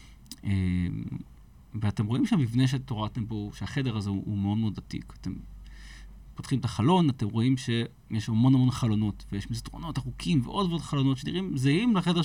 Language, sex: Hebrew, male